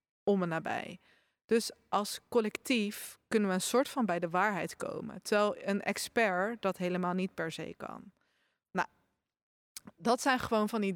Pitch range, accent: 195-230 Hz, Dutch